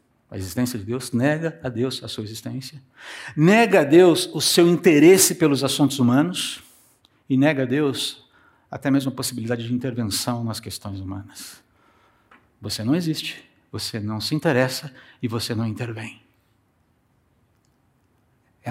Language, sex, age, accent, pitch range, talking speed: Portuguese, male, 60-79, Brazilian, 105-140 Hz, 140 wpm